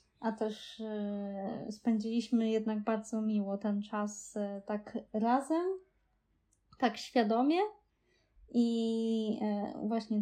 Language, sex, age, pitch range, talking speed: Polish, female, 20-39, 220-265 Hz, 80 wpm